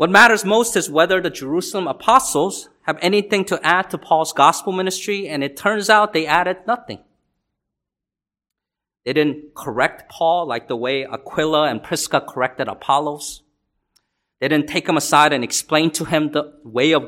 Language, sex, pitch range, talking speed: English, male, 150-205 Hz, 165 wpm